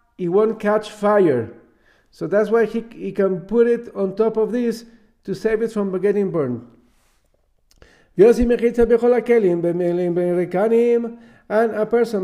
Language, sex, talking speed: English, male, 125 wpm